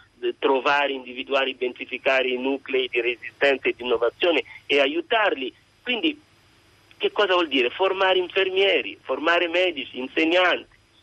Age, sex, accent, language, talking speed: 40-59, male, native, Italian, 120 wpm